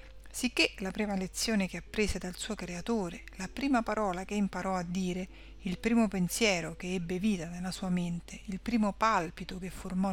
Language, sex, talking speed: Italian, female, 180 wpm